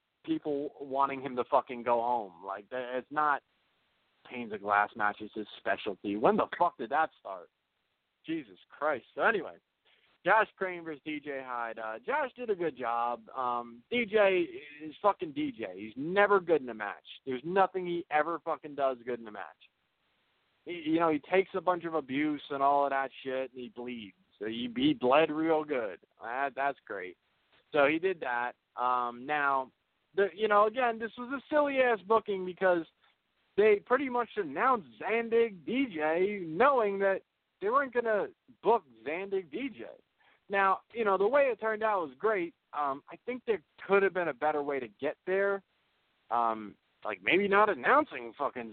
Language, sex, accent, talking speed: English, male, American, 175 wpm